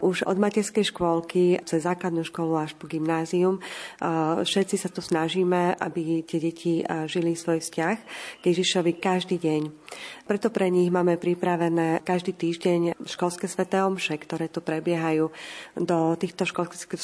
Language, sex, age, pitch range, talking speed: Slovak, female, 30-49, 165-185 Hz, 135 wpm